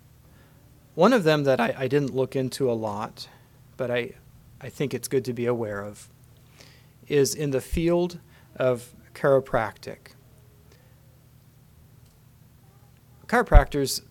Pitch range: 120-140 Hz